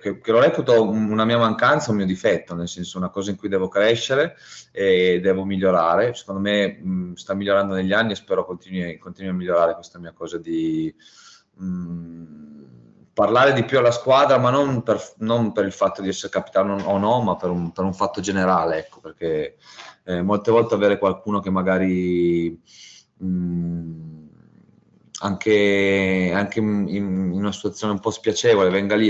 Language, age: Italian, 30-49